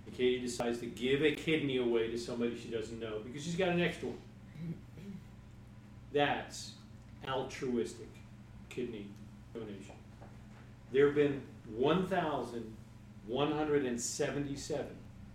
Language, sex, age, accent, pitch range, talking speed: English, male, 40-59, American, 110-120 Hz, 105 wpm